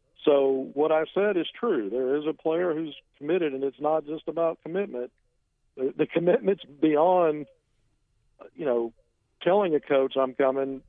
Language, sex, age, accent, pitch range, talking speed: English, male, 50-69, American, 130-165 Hz, 155 wpm